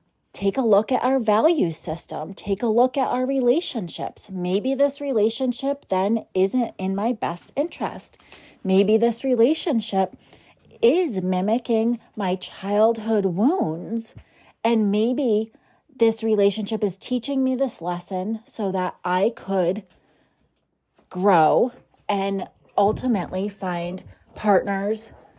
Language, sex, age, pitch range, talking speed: English, female, 30-49, 185-235 Hz, 115 wpm